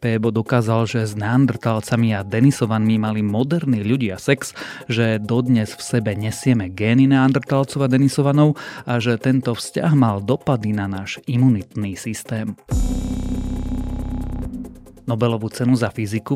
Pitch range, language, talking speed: 110-130 Hz, Slovak, 120 wpm